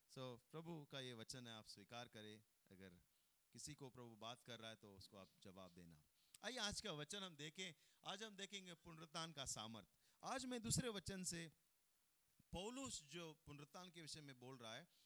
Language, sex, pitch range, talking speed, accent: Hindi, male, 125-195 Hz, 110 wpm, native